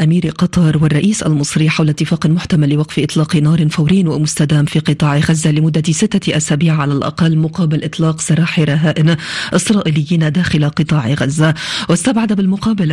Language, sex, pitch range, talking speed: Arabic, female, 155-180 Hz, 140 wpm